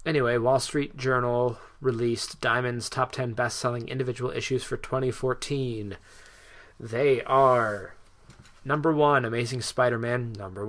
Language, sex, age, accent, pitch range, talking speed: English, male, 20-39, American, 110-130 Hz, 110 wpm